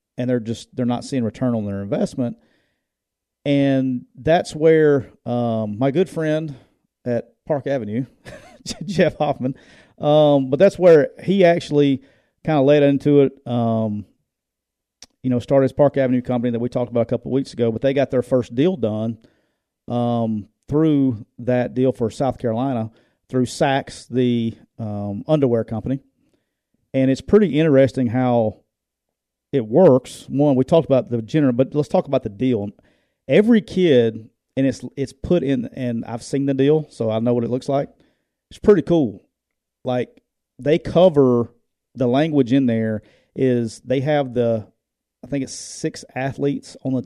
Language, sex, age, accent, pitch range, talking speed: English, male, 40-59, American, 120-140 Hz, 165 wpm